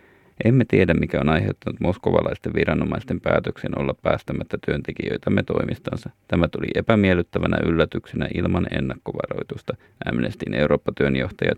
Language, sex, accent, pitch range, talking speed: Finnish, male, native, 85-105 Hz, 105 wpm